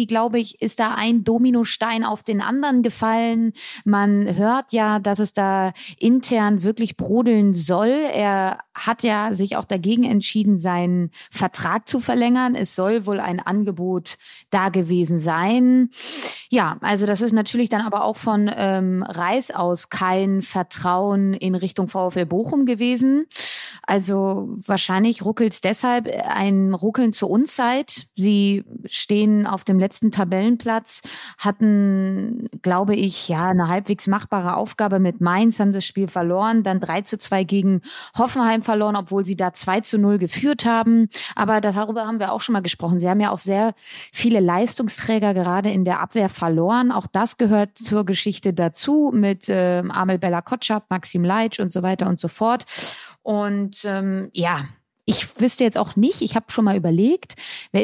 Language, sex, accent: German, female, German